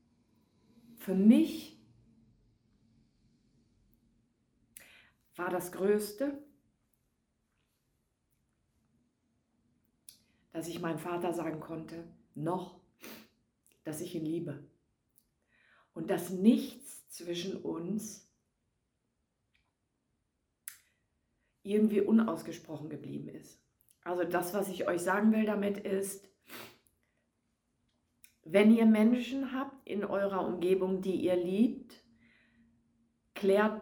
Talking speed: 80 wpm